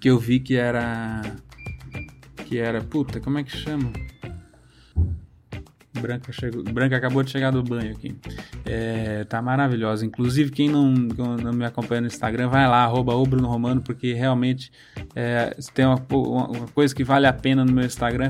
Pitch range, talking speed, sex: 120-145 Hz, 165 wpm, male